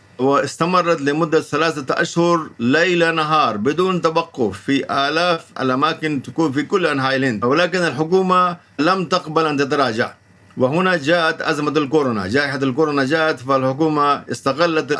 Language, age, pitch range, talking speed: Arabic, 50-69, 135-165 Hz, 125 wpm